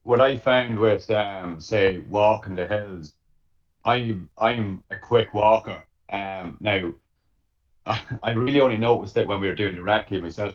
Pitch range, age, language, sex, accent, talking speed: 90-110 Hz, 30-49, English, male, British, 170 wpm